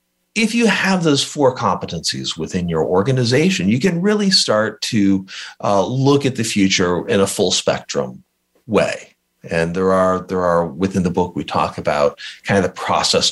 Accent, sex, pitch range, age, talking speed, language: American, male, 85-110 Hz, 40-59, 170 wpm, English